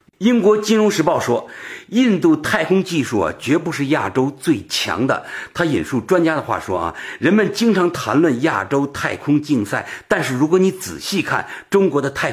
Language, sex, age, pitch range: Chinese, male, 60-79, 125-205 Hz